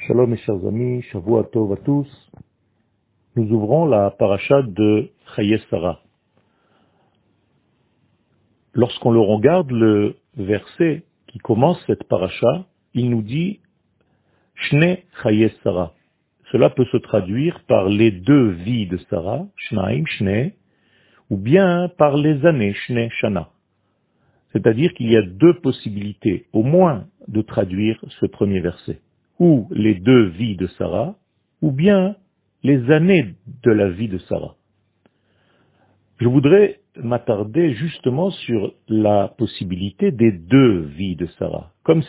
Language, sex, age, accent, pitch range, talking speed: French, male, 50-69, French, 105-155 Hz, 130 wpm